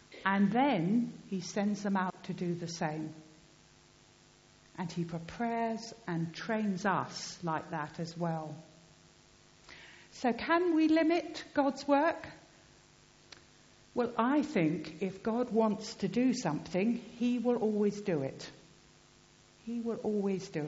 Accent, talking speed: British, 130 wpm